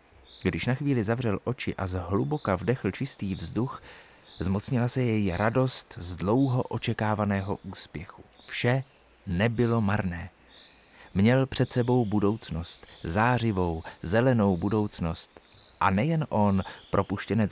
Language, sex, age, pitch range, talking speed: Czech, male, 30-49, 85-115 Hz, 110 wpm